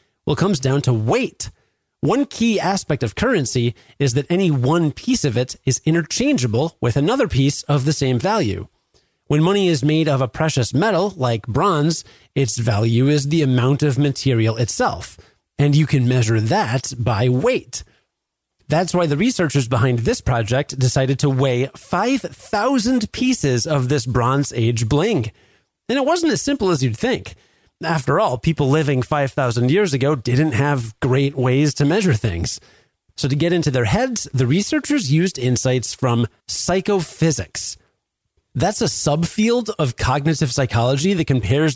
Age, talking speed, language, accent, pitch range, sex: 30-49, 160 wpm, English, American, 125-160 Hz, male